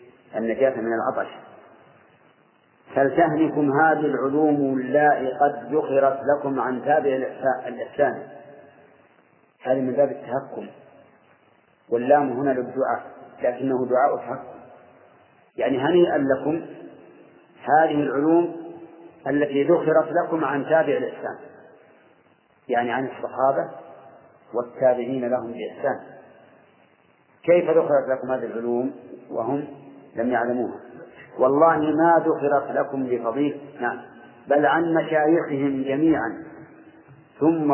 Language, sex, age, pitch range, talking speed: Arabic, male, 40-59, 130-150 Hz, 90 wpm